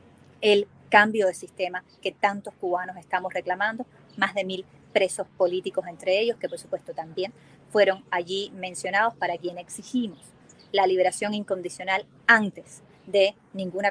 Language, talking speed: English, 140 wpm